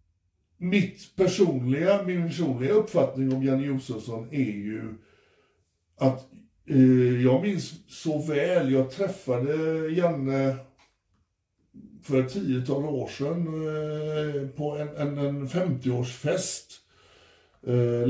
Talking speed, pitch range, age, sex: 105 wpm, 130-160 Hz, 60-79, male